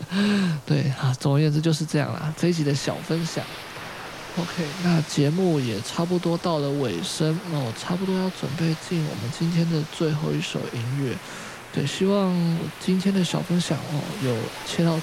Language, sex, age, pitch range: Chinese, male, 20-39, 135-165 Hz